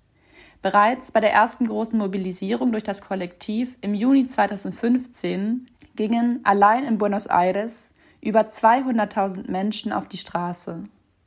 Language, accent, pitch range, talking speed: German, German, 195-235 Hz, 120 wpm